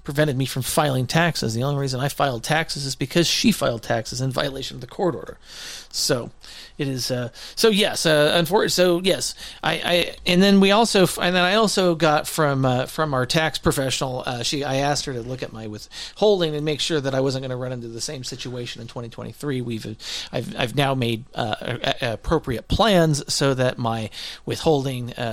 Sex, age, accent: male, 40-59, American